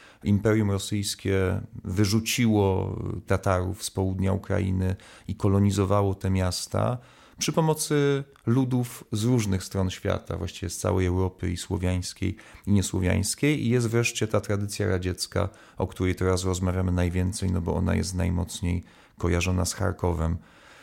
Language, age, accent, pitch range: Polish, 40-59, native, 95-115 Hz